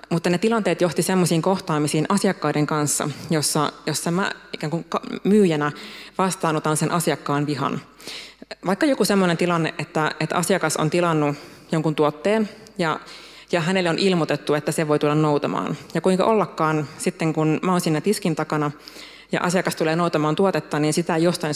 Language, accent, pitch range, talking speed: Finnish, native, 150-180 Hz, 160 wpm